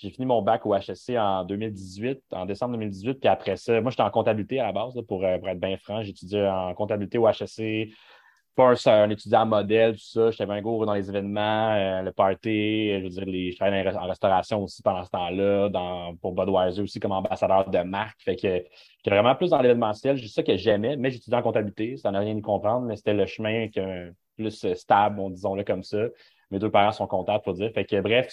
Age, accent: 30-49, Canadian